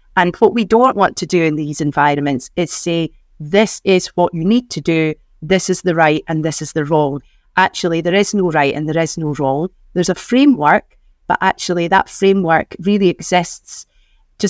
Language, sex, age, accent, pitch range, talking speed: English, female, 30-49, British, 160-210 Hz, 200 wpm